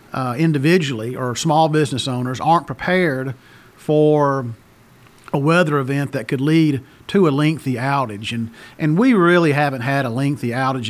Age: 40-59